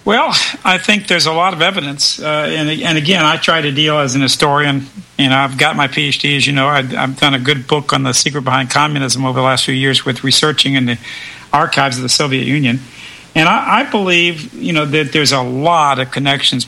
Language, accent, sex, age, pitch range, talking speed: English, American, male, 50-69, 135-160 Hz, 235 wpm